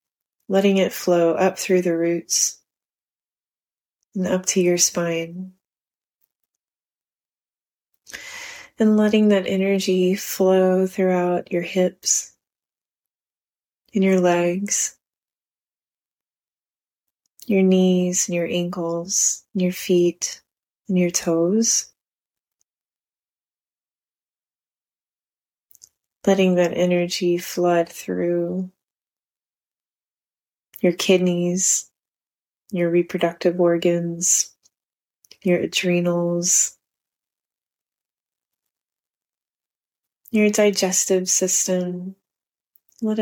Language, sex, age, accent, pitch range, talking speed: English, female, 20-39, American, 175-190 Hz, 70 wpm